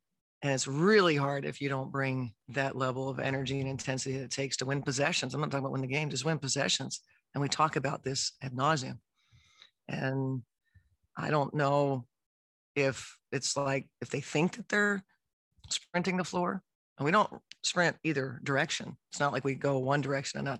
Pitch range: 130-150 Hz